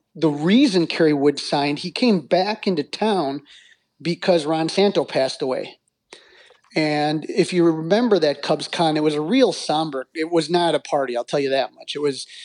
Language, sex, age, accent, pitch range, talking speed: English, male, 30-49, American, 145-175 Hz, 190 wpm